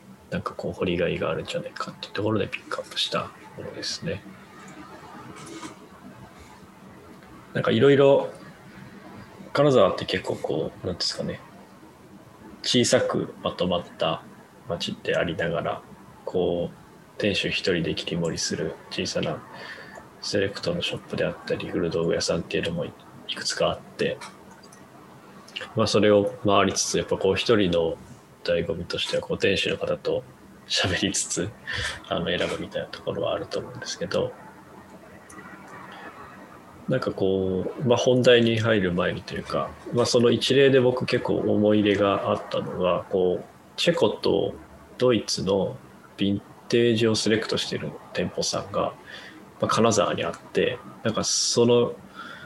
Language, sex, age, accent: English, male, 20-39, Japanese